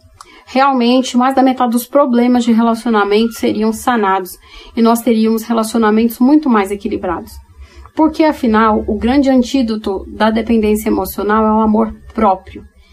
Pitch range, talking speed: 215-255 Hz, 135 wpm